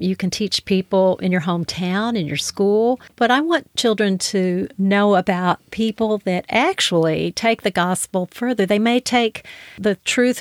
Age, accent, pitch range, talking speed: 40-59, American, 185-220 Hz, 165 wpm